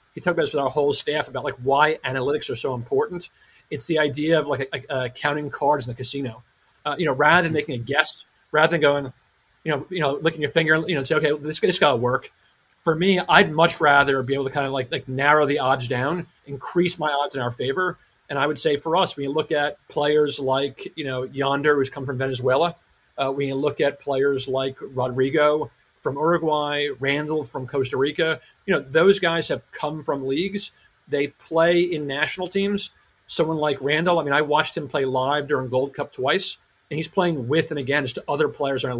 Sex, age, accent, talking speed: male, 40-59, American, 225 wpm